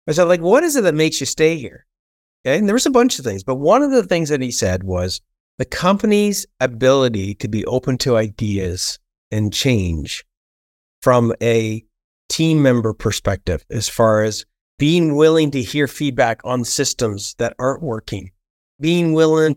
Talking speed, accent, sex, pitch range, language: 180 wpm, American, male, 120-165 Hz, English